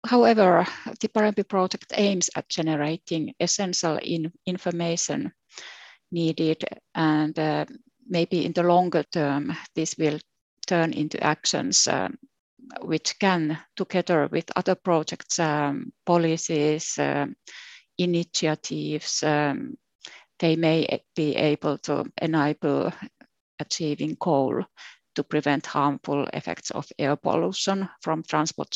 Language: English